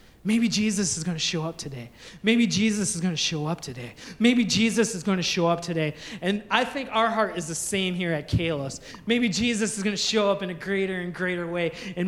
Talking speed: 225 wpm